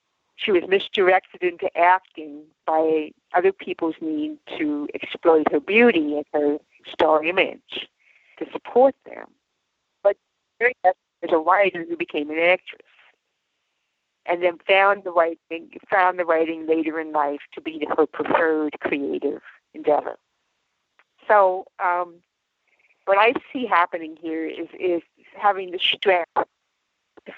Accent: American